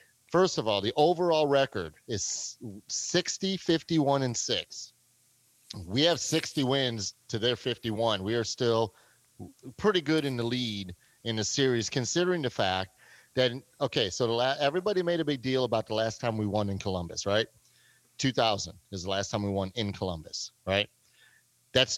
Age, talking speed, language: 30-49, 165 wpm, English